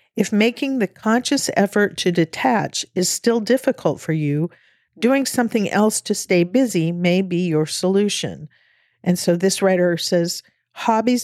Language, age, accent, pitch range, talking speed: English, 50-69, American, 170-215 Hz, 150 wpm